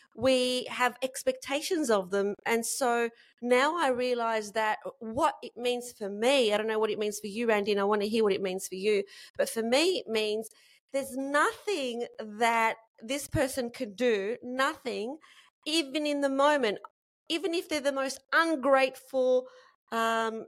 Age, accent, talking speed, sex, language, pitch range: 30-49, Australian, 170 wpm, female, English, 230-285 Hz